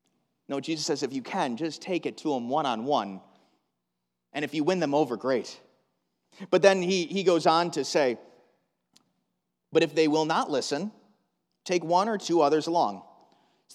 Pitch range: 125-190 Hz